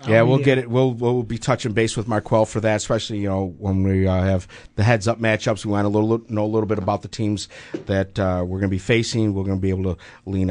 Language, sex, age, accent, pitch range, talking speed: English, male, 50-69, American, 105-130 Hz, 275 wpm